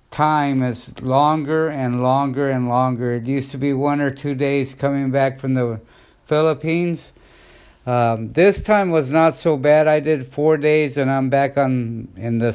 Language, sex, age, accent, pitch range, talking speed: English, male, 60-79, American, 130-165 Hz, 175 wpm